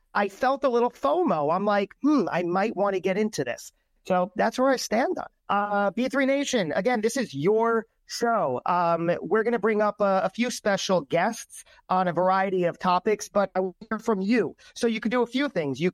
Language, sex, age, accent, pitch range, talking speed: English, male, 40-59, American, 175-225 Hz, 220 wpm